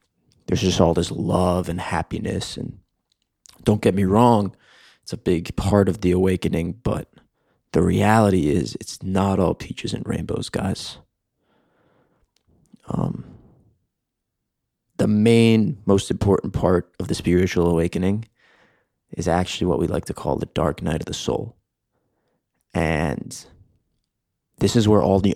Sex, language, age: male, English, 20-39